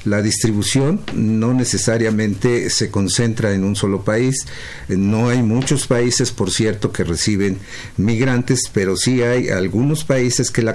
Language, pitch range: Spanish, 100-130 Hz